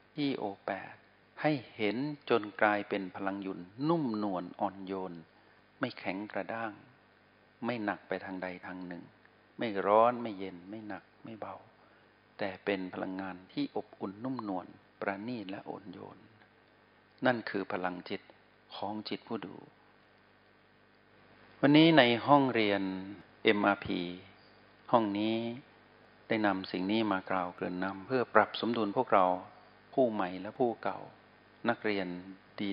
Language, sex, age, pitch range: Thai, male, 60-79, 95-115 Hz